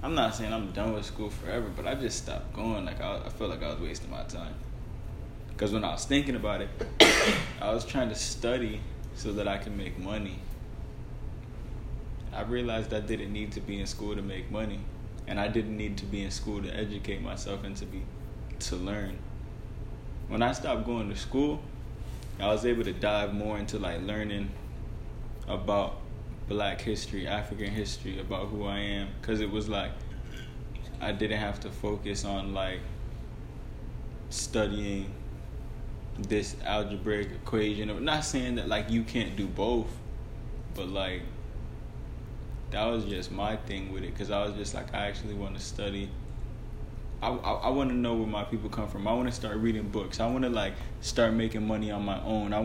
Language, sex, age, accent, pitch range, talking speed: English, male, 20-39, American, 100-110 Hz, 185 wpm